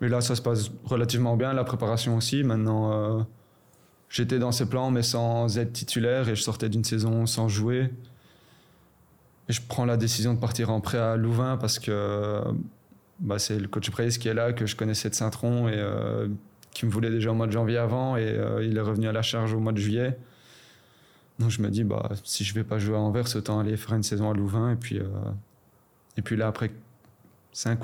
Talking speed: 225 wpm